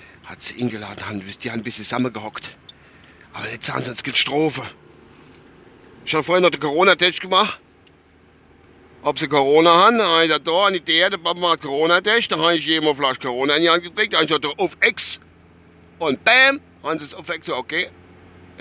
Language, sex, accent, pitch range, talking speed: German, male, German, 95-140 Hz, 200 wpm